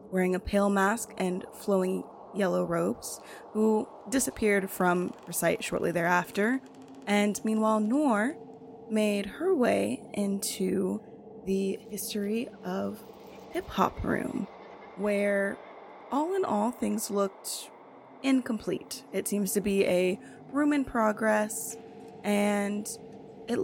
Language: English